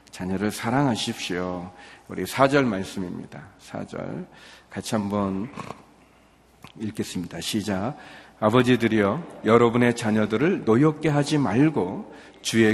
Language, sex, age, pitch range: Korean, male, 40-59, 100-125 Hz